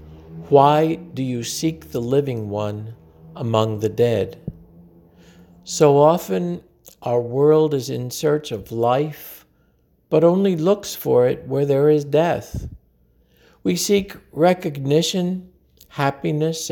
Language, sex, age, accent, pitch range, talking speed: English, male, 60-79, American, 105-160 Hz, 115 wpm